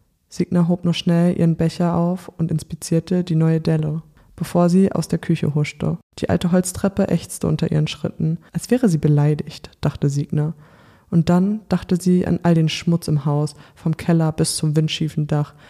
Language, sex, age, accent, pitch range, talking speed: German, female, 20-39, German, 155-180 Hz, 180 wpm